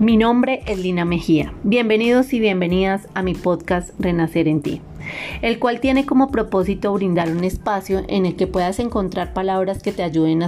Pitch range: 175-215 Hz